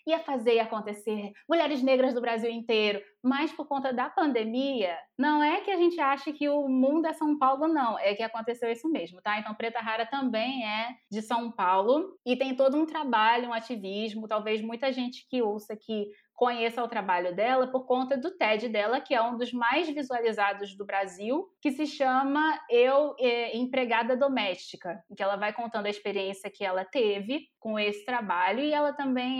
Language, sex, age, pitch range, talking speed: Portuguese, female, 20-39, 210-275 Hz, 190 wpm